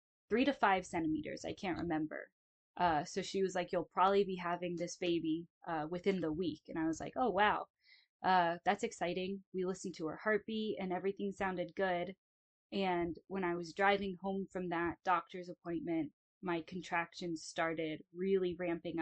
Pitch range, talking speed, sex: 170-195 Hz, 175 wpm, female